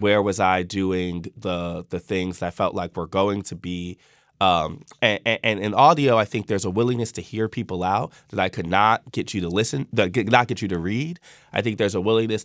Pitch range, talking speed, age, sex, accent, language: 95-120 Hz, 240 wpm, 20-39, male, American, English